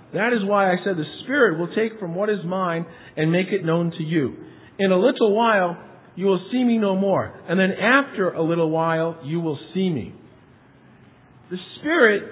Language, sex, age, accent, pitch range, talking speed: English, male, 50-69, American, 190-245 Hz, 200 wpm